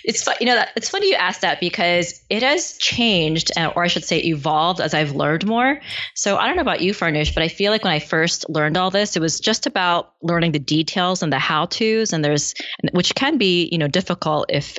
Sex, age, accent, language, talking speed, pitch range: female, 20-39, American, English, 240 wpm, 150-180 Hz